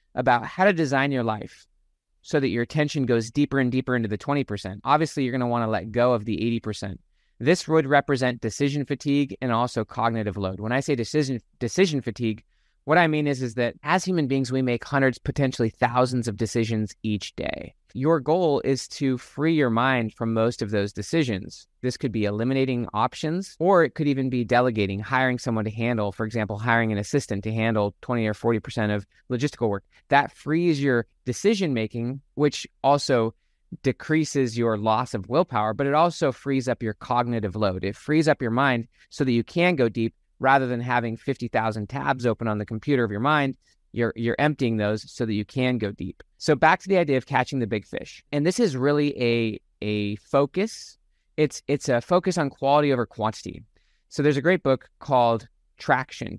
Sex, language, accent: male, English, American